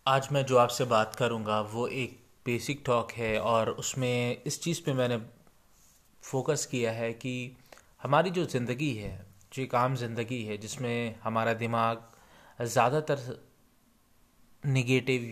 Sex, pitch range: male, 115-140 Hz